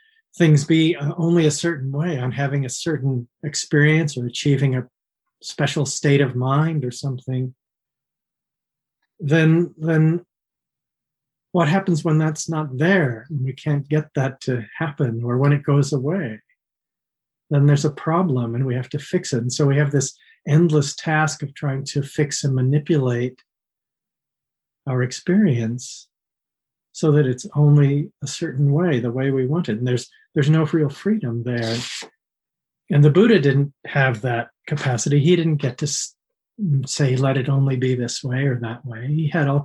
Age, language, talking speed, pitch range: 40-59, English, 165 wpm, 130-160 Hz